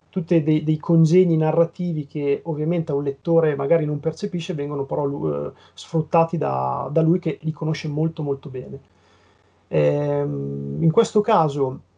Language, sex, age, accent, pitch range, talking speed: Italian, male, 30-49, native, 145-180 Hz, 150 wpm